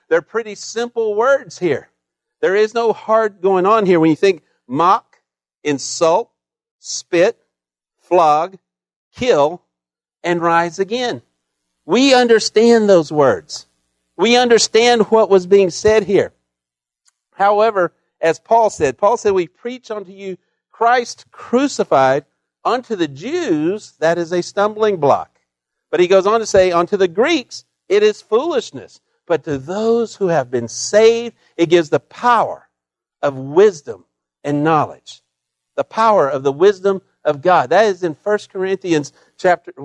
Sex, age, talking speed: male, 50-69, 140 wpm